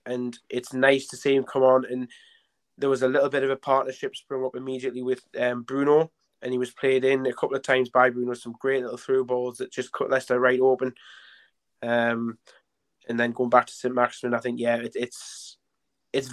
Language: English